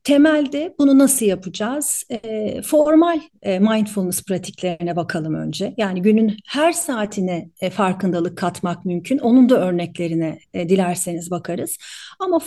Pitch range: 185-255 Hz